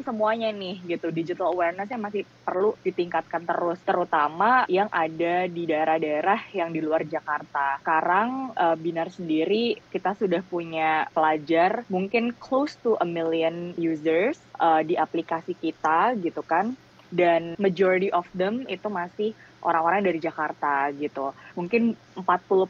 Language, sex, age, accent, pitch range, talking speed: Indonesian, female, 20-39, native, 160-190 Hz, 125 wpm